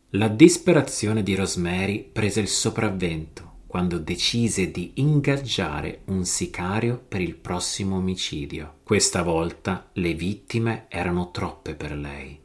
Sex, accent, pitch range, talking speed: male, native, 90-115 Hz, 120 wpm